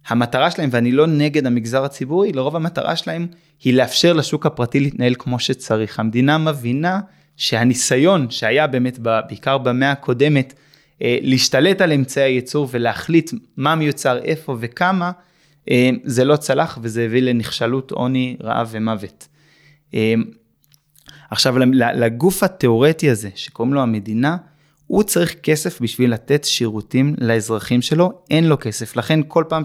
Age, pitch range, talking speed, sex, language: 20-39, 125-155 Hz, 130 wpm, male, Hebrew